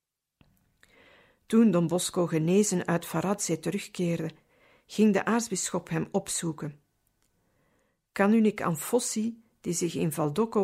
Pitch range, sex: 170-210 Hz, female